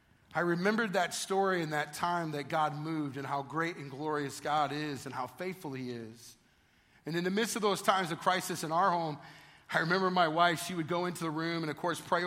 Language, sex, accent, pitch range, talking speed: English, male, American, 140-175 Hz, 235 wpm